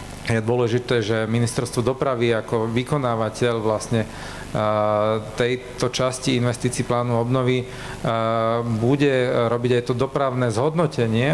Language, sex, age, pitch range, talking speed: Slovak, male, 40-59, 115-135 Hz, 100 wpm